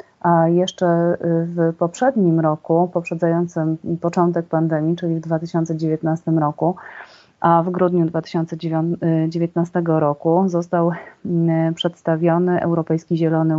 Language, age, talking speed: Polish, 30-49, 95 wpm